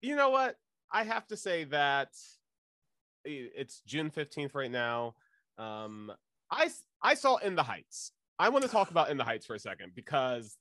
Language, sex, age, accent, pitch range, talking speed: English, male, 30-49, American, 125-185 Hz, 180 wpm